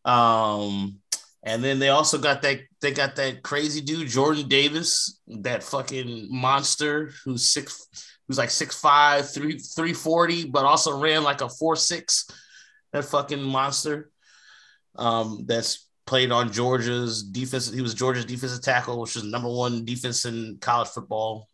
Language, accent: English, American